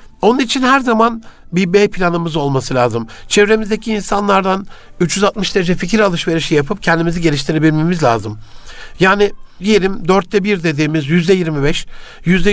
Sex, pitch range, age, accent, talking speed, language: male, 165-205 Hz, 60-79, native, 130 wpm, Turkish